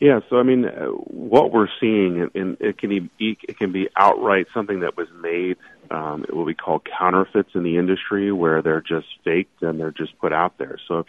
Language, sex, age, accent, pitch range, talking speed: English, male, 40-59, American, 85-100 Hz, 210 wpm